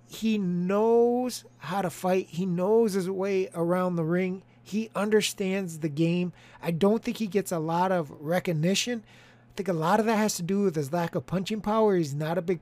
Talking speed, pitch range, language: 210 wpm, 170-220 Hz, English